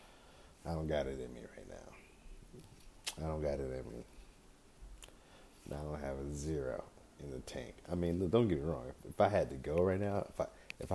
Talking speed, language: 195 wpm, English